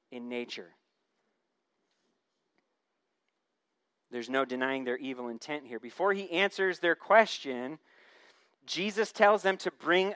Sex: male